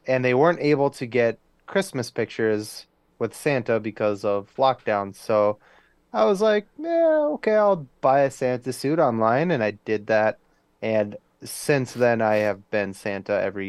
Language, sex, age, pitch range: English, male, 20-39, 105-140 Hz